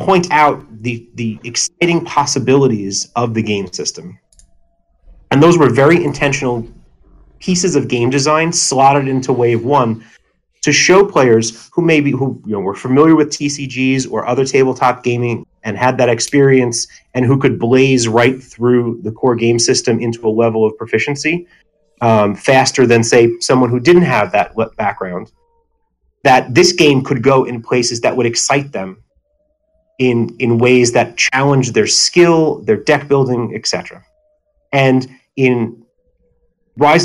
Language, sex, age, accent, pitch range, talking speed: English, male, 30-49, American, 115-150 Hz, 150 wpm